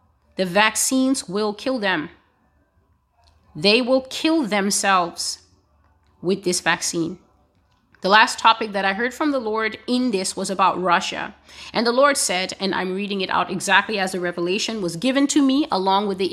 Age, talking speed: 30-49, 170 wpm